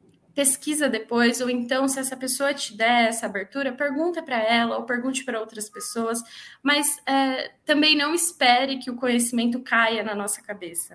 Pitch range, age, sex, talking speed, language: 215-270 Hz, 10-29, female, 170 wpm, Portuguese